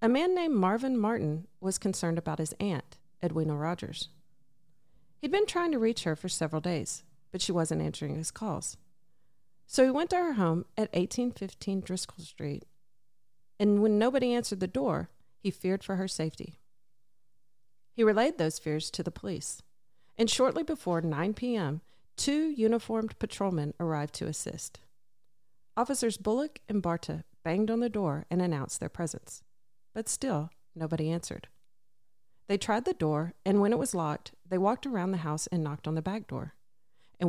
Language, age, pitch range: English, 40-59, 150-220 Hz